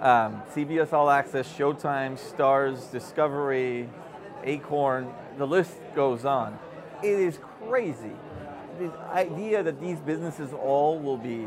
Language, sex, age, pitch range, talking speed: English, male, 30-49, 130-160 Hz, 120 wpm